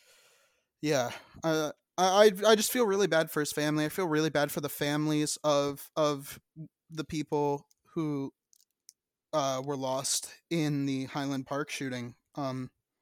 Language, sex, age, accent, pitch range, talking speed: English, male, 20-39, American, 140-180 Hz, 145 wpm